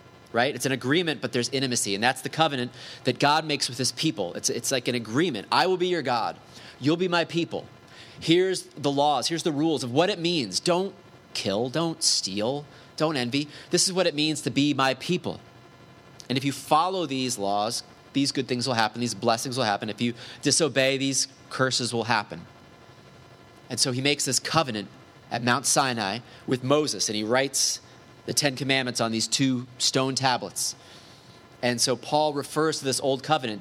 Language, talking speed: English, 195 wpm